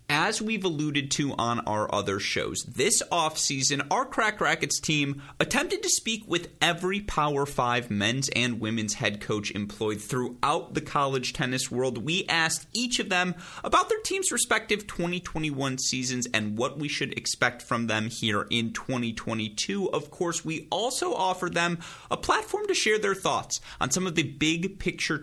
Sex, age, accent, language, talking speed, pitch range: male, 30-49, American, English, 170 wpm, 115-170 Hz